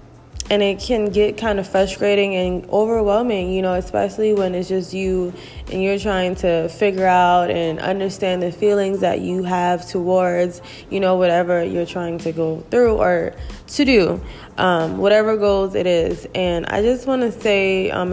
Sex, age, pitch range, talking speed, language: female, 20-39, 175-195 Hz, 175 wpm, English